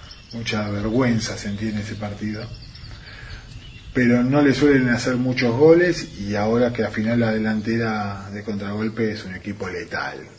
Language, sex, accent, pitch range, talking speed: Spanish, male, Argentinian, 105-125 Hz, 150 wpm